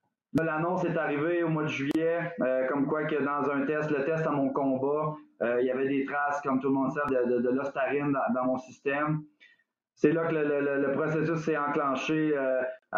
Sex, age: male, 30-49